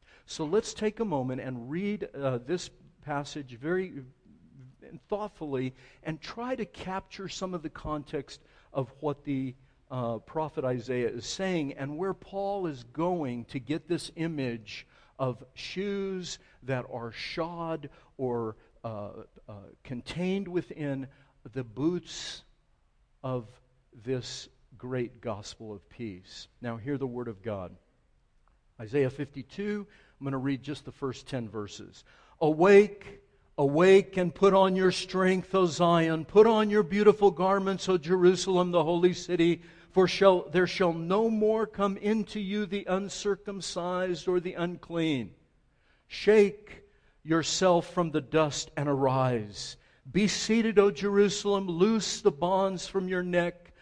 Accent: American